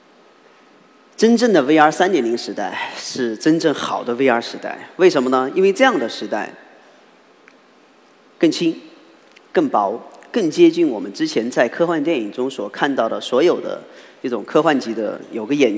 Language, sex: Chinese, male